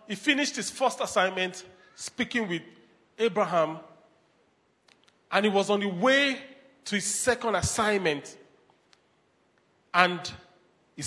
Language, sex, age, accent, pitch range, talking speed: English, male, 40-59, Nigerian, 180-235 Hz, 110 wpm